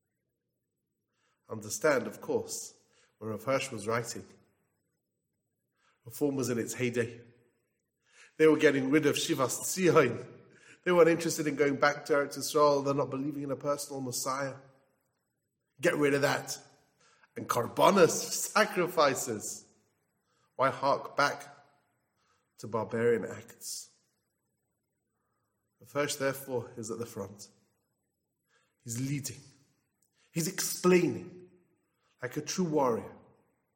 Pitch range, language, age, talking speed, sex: 120-155 Hz, English, 30-49, 115 wpm, male